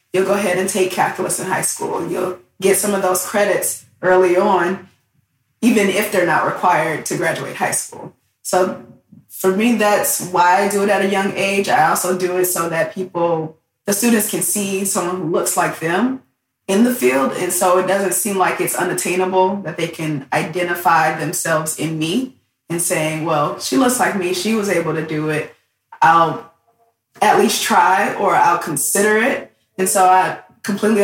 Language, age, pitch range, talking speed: English, 20-39, 160-190 Hz, 190 wpm